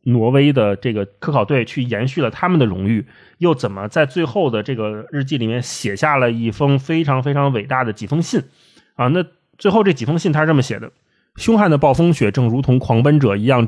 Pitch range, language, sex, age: 115-155 Hz, Chinese, male, 20-39